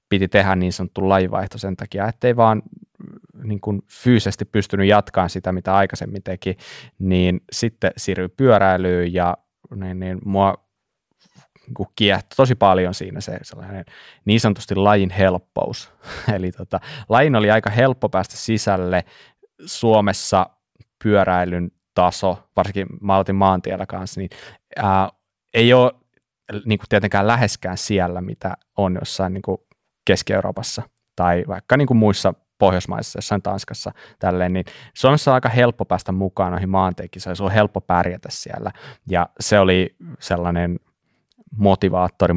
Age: 20-39